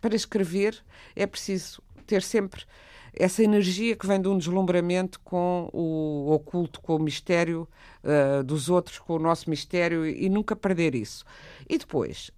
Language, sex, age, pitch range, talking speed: Portuguese, female, 50-69, 155-210 Hz, 160 wpm